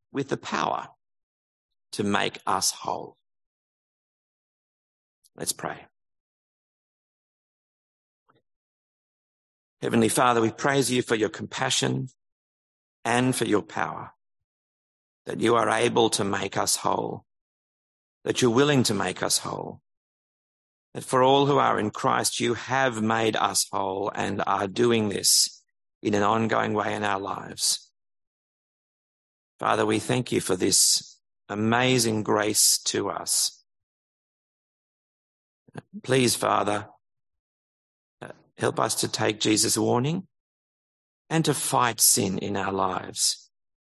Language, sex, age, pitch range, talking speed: English, male, 50-69, 95-120 Hz, 115 wpm